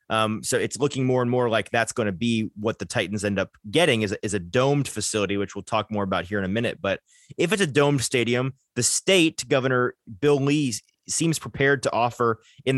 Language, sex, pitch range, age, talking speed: English, male, 110-140 Hz, 30-49, 230 wpm